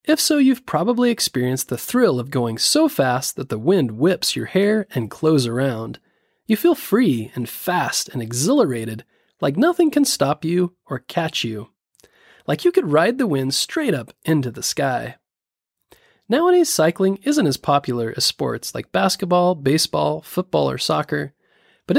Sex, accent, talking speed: male, American, 165 wpm